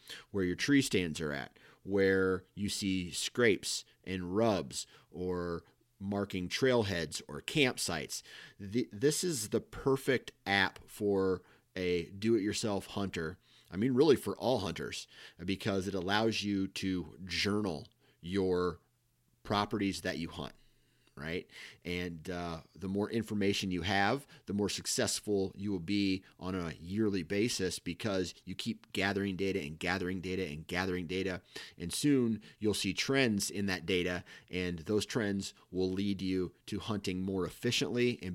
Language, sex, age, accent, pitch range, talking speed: English, male, 30-49, American, 90-110 Hz, 140 wpm